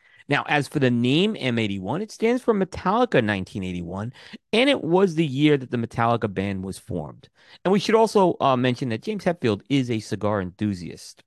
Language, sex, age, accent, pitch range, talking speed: English, male, 40-59, American, 105-165 Hz, 185 wpm